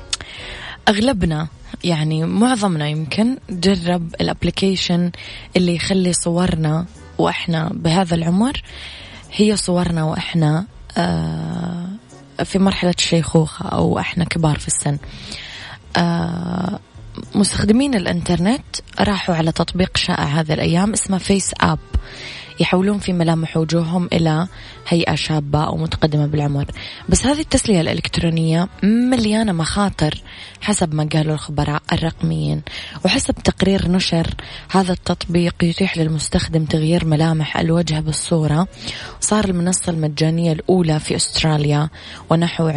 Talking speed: 100 wpm